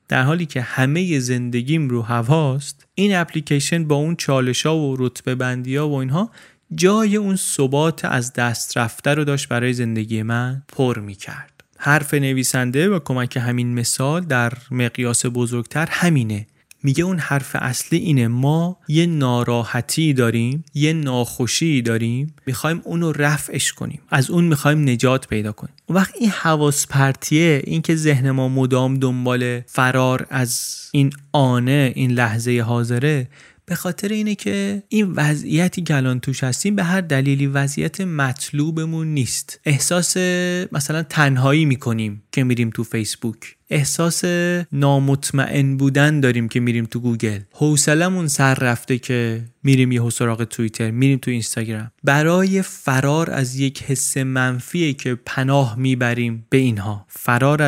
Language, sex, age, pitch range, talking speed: Persian, male, 30-49, 125-155 Hz, 135 wpm